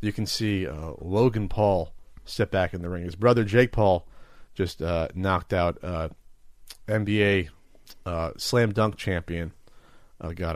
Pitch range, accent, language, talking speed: 85-110 Hz, American, English, 155 wpm